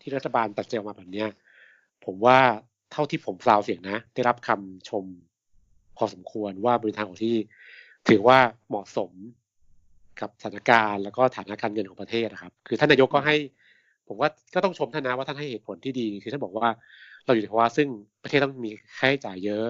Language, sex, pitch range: Thai, male, 105-130 Hz